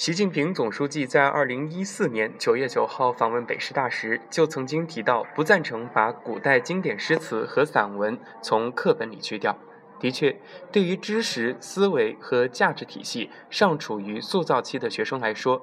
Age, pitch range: 20-39, 120-200 Hz